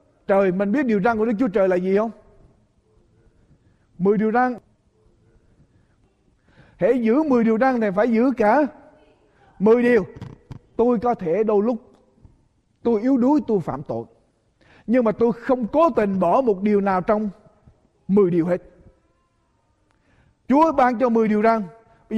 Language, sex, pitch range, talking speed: Vietnamese, male, 195-260 Hz, 155 wpm